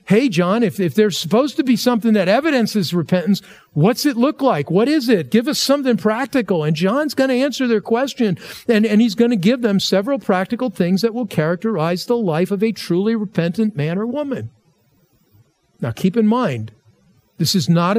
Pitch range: 175-235 Hz